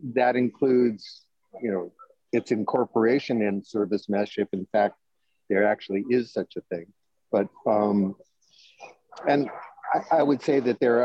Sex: male